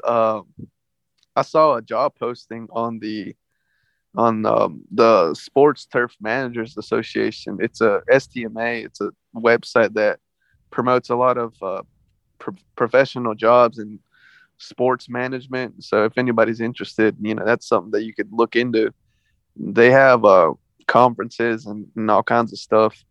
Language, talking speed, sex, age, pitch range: English, 150 wpm, male, 20-39, 110-125 Hz